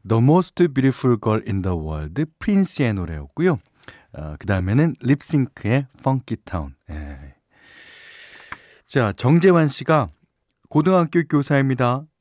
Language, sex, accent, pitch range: Korean, male, native, 100-155 Hz